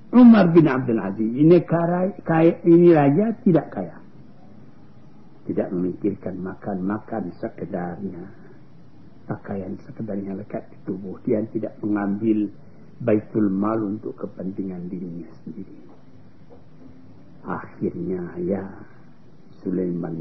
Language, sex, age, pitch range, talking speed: Malay, male, 60-79, 100-160 Hz, 100 wpm